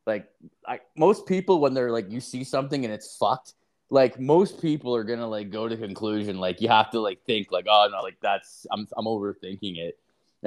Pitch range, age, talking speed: 105-130 Hz, 20-39, 225 wpm